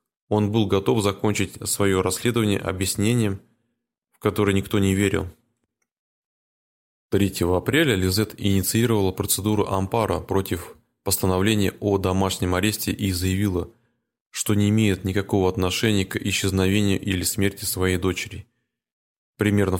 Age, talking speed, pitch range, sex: 20-39, 110 wpm, 95-115 Hz, male